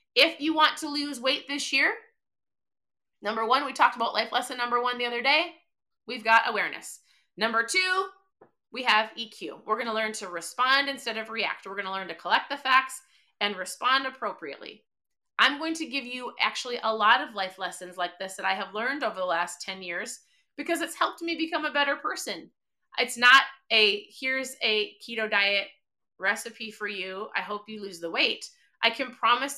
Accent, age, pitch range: American, 30-49, 205-265 Hz